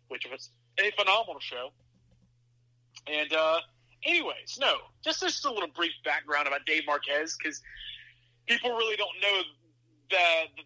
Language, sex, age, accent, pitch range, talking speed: English, male, 30-49, American, 125-165 Hz, 135 wpm